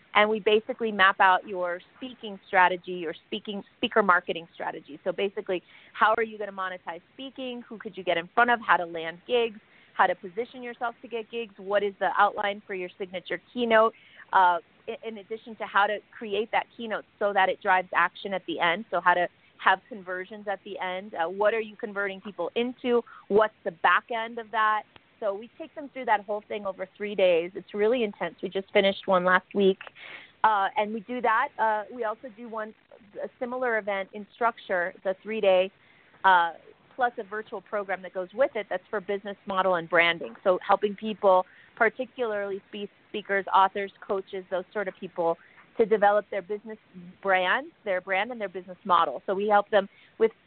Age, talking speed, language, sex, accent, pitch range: 30-49, 195 wpm, English, female, American, 185-220 Hz